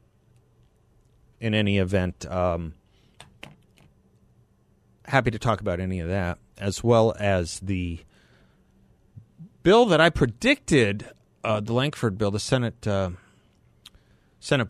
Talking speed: 110 wpm